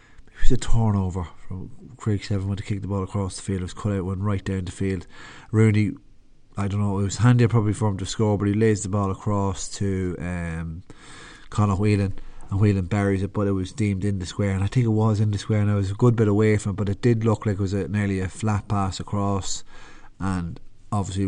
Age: 30-49